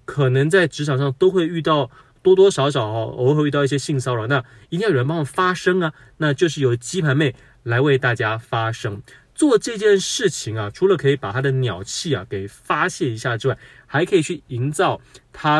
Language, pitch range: Chinese, 120-155 Hz